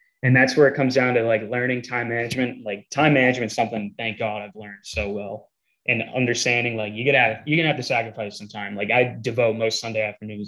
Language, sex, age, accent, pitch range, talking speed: English, male, 20-39, American, 110-125 Hz, 240 wpm